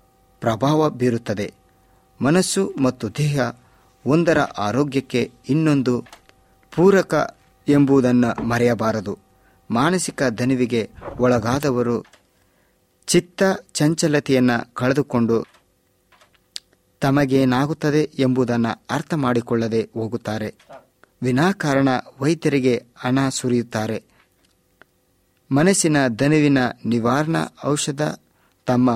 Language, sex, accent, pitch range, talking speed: Kannada, male, native, 115-145 Hz, 65 wpm